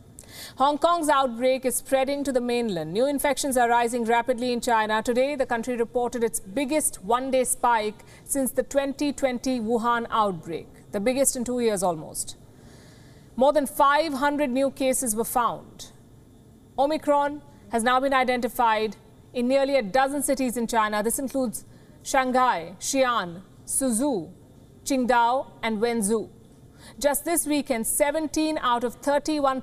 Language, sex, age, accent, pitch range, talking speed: English, female, 50-69, Indian, 220-270 Hz, 140 wpm